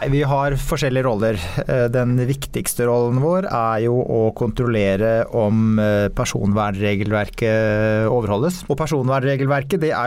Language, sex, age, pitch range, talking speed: English, male, 30-49, 110-130 Hz, 115 wpm